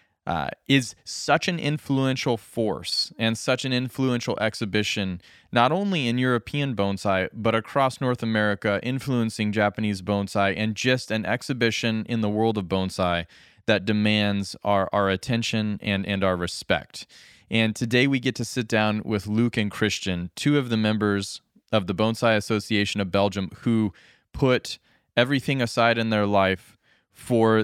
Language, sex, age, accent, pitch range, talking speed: English, male, 20-39, American, 100-120 Hz, 150 wpm